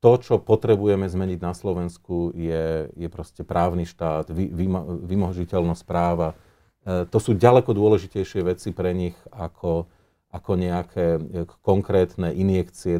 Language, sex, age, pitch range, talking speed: Slovak, male, 40-59, 90-105 Hz, 130 wpm